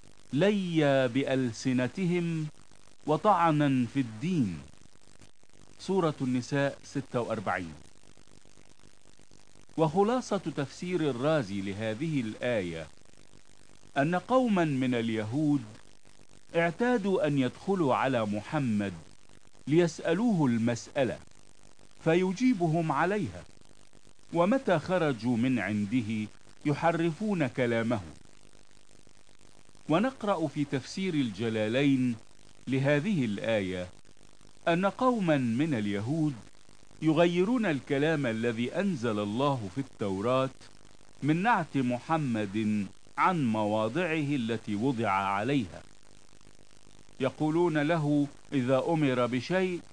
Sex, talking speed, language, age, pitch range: male, 75 wpm, Italian, 50-69, 110-160 Hz